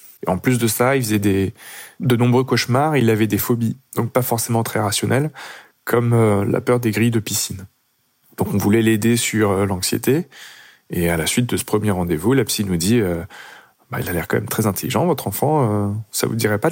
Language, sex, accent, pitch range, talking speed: French, male, French, 100-120 Hz, 230 wpm